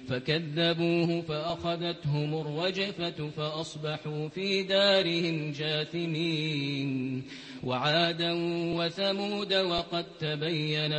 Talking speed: 60 wpm